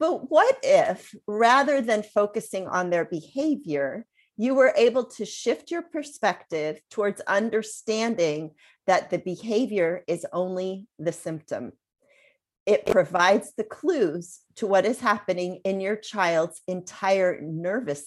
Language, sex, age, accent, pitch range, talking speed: English, female, 40-59, American, 165-215 Hz, 125 wpm